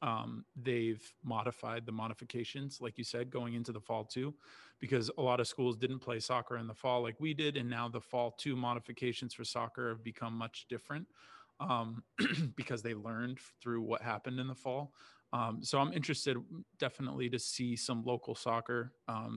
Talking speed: 185 wpm